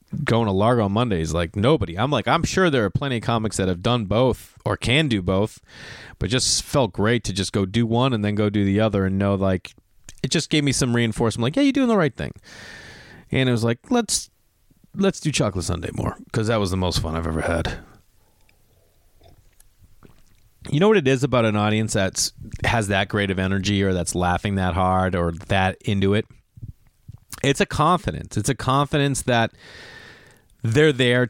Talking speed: 205 wpm